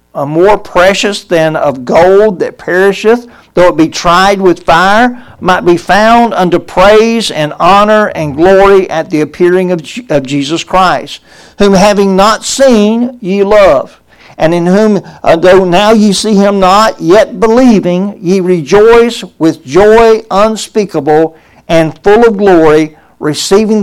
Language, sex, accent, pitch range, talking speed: English, male, American, 170-205 Hz, 150 wpm